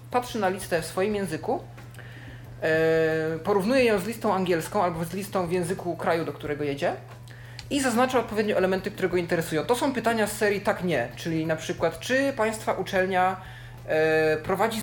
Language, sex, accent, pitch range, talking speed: Polish, male, native, 140-185 Hz, 165 wpm